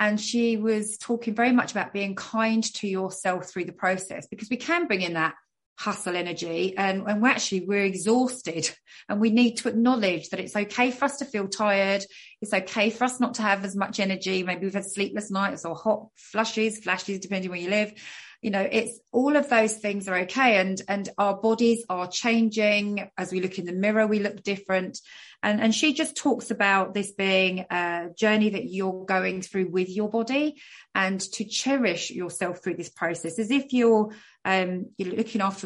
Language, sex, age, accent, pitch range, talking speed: English, female, 30-49, British, 185-225 Hz, 200 wpm